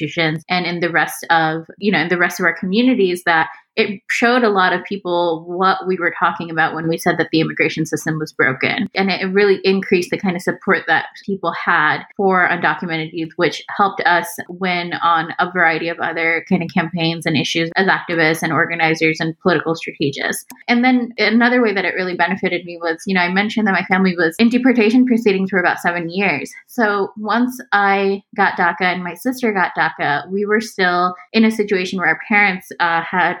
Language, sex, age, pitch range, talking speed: English, female, 20-39, 175-210 Hz, 205 wpm